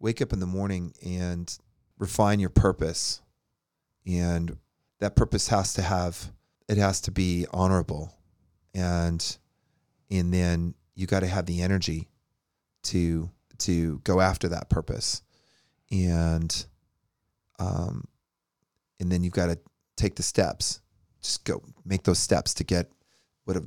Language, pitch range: English, 85-105 Hz